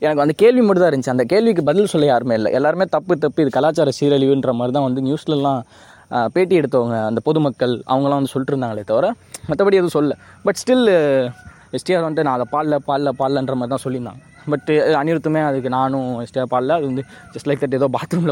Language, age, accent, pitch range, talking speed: Tamil, 20-39, native, 125-160 Hz, 185 wpm